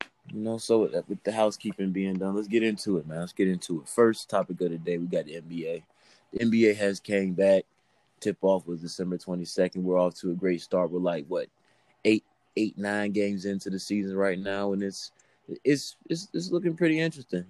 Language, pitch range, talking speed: English, 90-105 Hz, 215 wpm